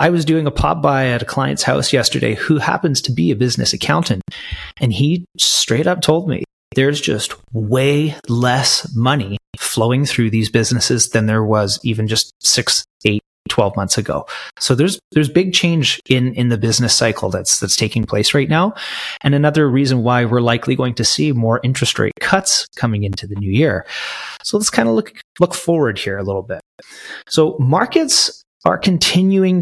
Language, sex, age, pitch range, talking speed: English, male, 30-49, 115-160 Hz, 185 wpm